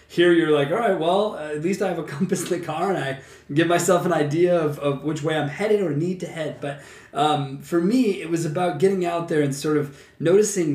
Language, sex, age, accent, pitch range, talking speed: English, male, 20-39, American, 135-170 Hz, 255 wpm